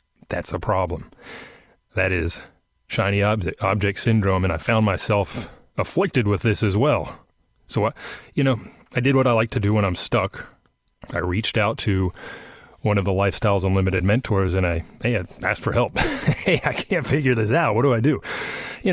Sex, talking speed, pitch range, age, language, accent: male, 190 wpm, 95-115 Hz, 30-49, English, American